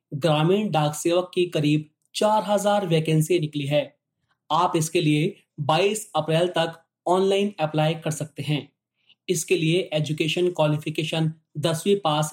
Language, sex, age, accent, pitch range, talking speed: Hindi, male, 30-49, native, 155-180 Hz, 125 wpm